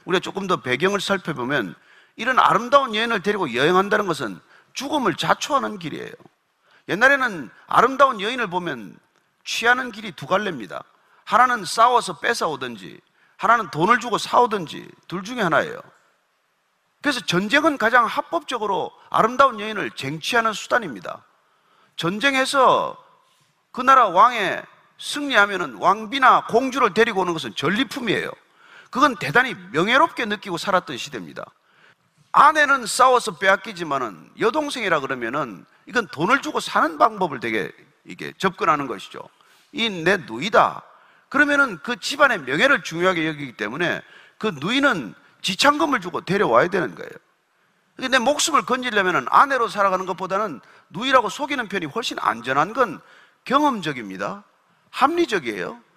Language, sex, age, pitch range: Korean, male, 40-59, 185-280 Hz